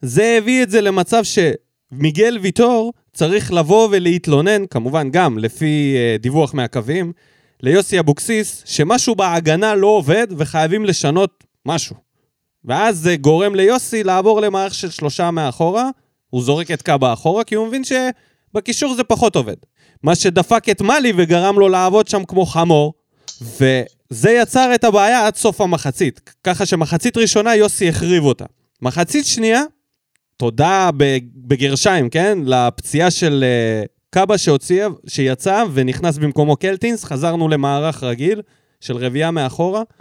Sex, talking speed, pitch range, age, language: male, 130 wpm, 140-210 Hz, 20-39, Hebrew